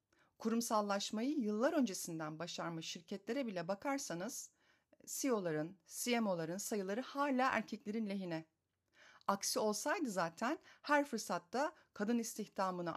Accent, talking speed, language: native, 95 wpm, Turkish